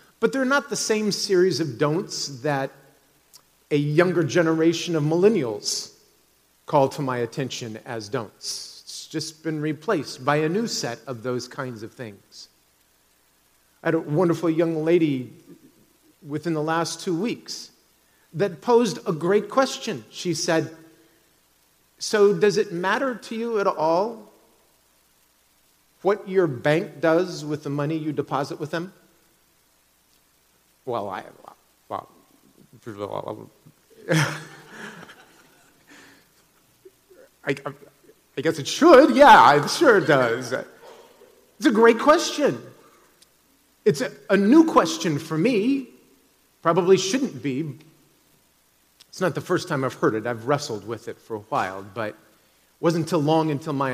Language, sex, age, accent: English, male, 40-59, American